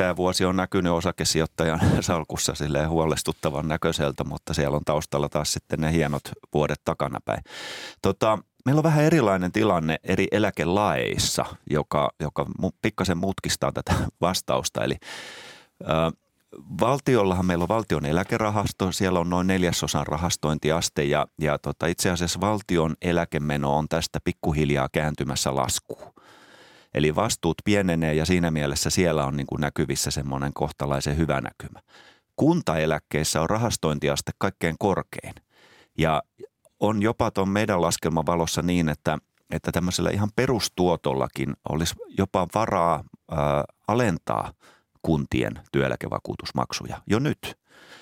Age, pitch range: 30-49, 75-95 Hz